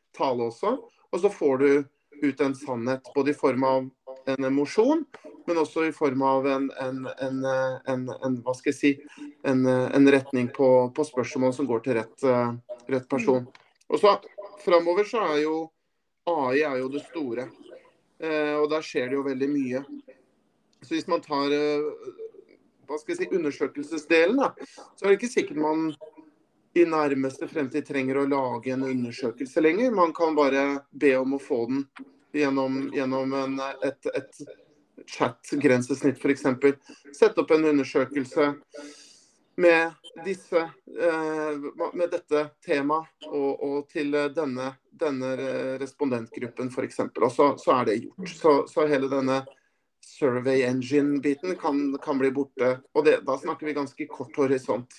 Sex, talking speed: male, 145 wpm